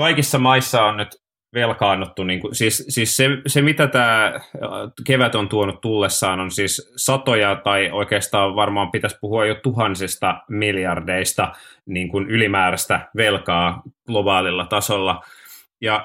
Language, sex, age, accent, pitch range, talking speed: Finnish, male, 30-49, native, 95-115 Hz, 115 wpm